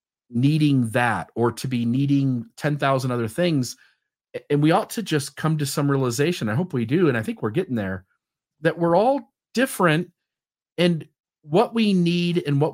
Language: English